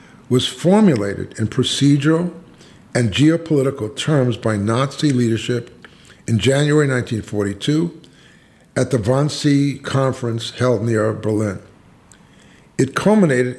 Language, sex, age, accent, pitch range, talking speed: English, male, 50-69, American, 115-150 Hz, 95 wpm